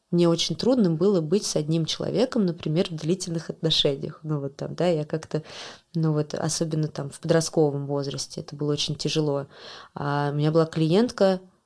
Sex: female